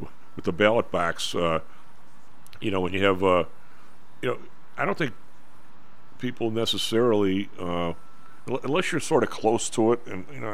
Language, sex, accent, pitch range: English, male, American, 80-100 Hz